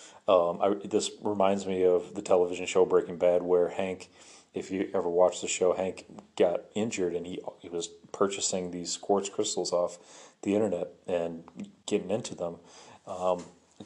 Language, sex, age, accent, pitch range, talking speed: English, male, 40-59, American, 90-110 Hz, 170 wpm